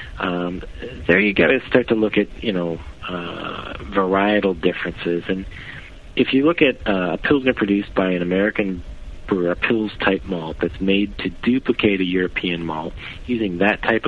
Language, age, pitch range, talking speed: English, 40-59, 85-100 Hz, 175 wpm